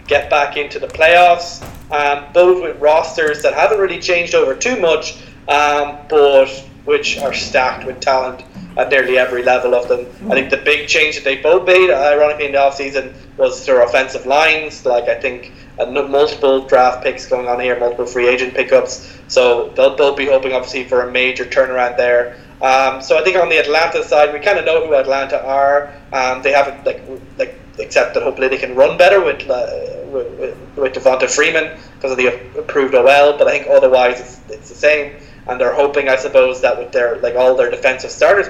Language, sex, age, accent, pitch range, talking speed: English, male, 20-39, Irish, 130-205 Hz, 205 wpm